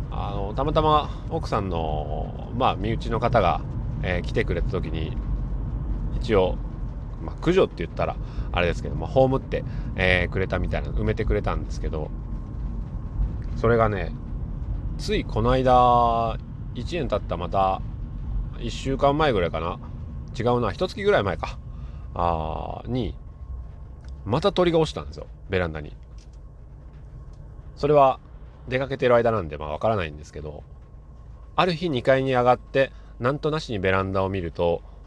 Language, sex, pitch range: Japanese, male, 75-120 Hz